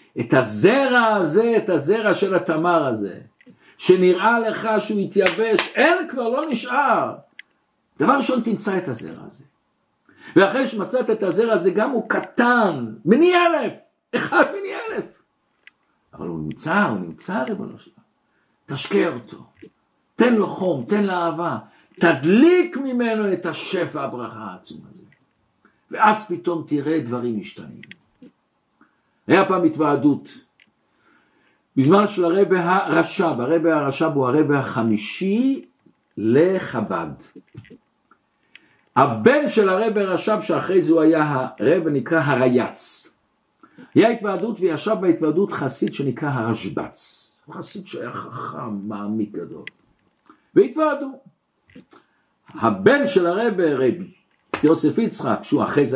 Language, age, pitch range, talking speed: Hebrew, 60-79, 155-230 Hz, 115 wpm